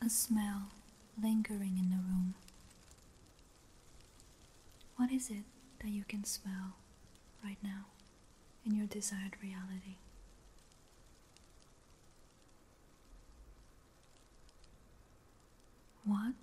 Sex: female